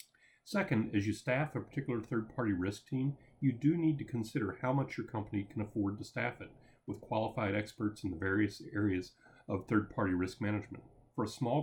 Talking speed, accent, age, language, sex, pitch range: 200 wpm, American, 40-59, English, male, 100-125 Hz